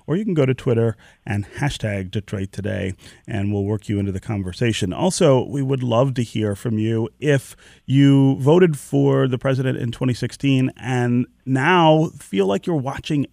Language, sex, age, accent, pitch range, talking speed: English, male, 30-49, American, 105-135 Hz, 175 wpm